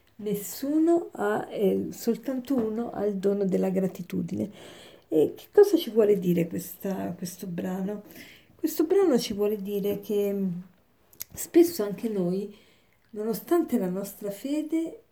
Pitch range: 195-250 Hz